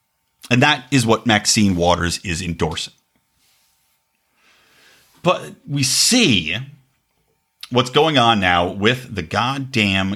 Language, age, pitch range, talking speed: English, 50-69, 110-150 Hz, 105 wpm